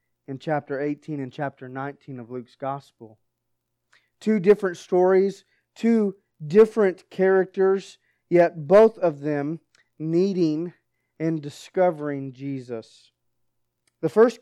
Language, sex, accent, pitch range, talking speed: English, male, American, 140-180 Hz, 105 wpm